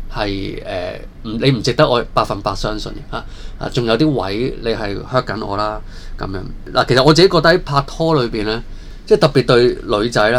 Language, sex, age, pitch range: Chinese, male, 20-39, 105-140 Hz